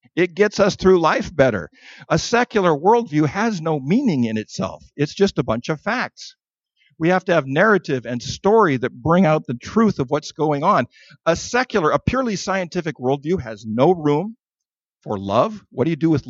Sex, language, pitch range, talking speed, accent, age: male, English, 140-205 Hz, 190 wpm, American, 50-69